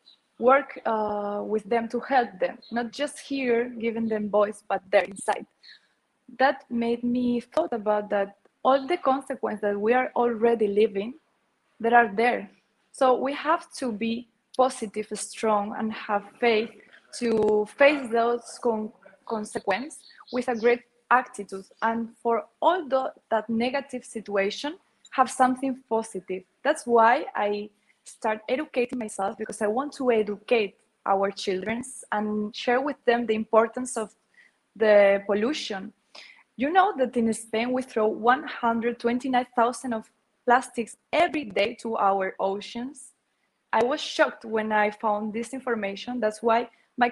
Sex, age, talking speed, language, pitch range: female, 20-39, 140 wpm, English, 210-255 Hz